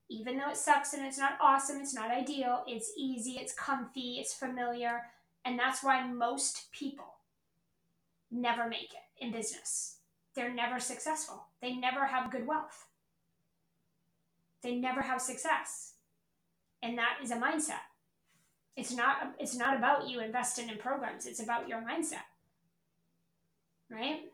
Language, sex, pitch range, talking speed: English, female, 235-275 Hz, 145 wpm